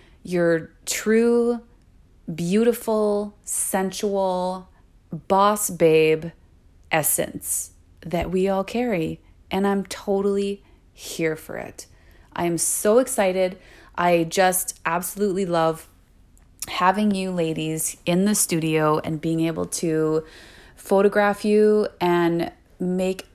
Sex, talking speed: female, 100 wpm